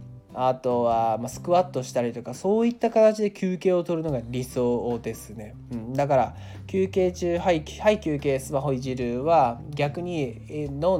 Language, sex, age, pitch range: Japanese, male, 20-39, 125-170 Hz